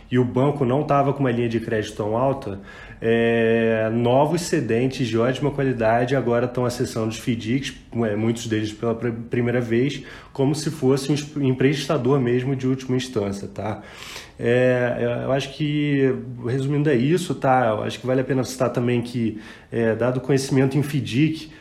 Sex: male